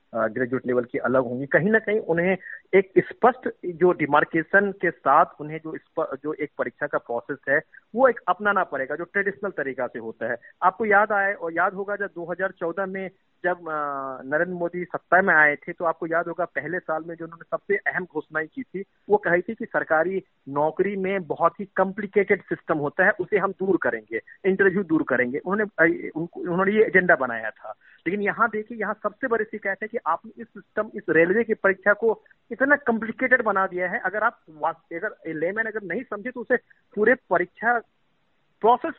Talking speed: 190 wpm